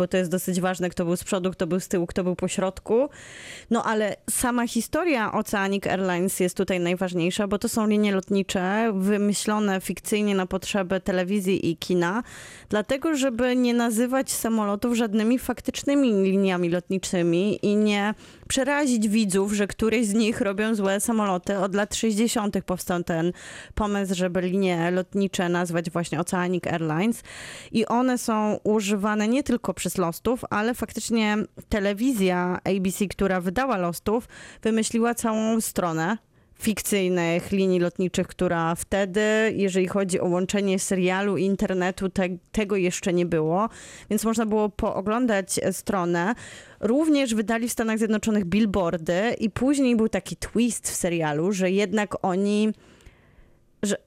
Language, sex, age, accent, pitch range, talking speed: Polish, female, 20-39, native, 185-225 Hz, 140 wpm